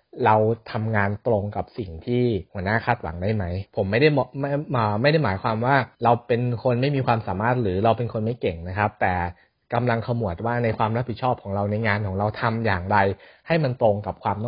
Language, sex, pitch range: Thai, male, 105-125 Hz